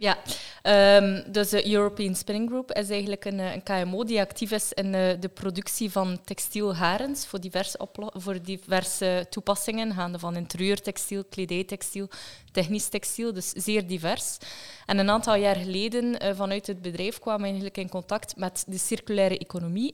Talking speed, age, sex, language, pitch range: 160 wpm, 20-39, female, Dutch, 185-210 Hz